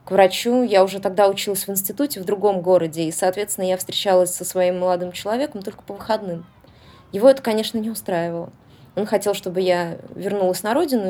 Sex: female